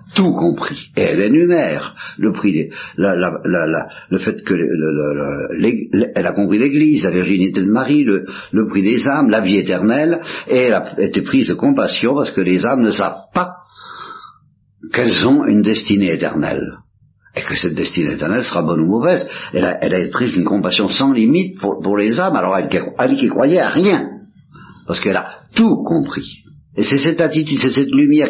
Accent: French